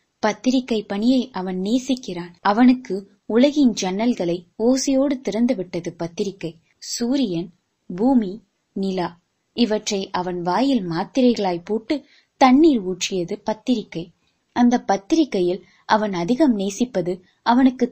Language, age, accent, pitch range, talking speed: Tamil, 20-39, native, 180-255 Hz, 65 wpm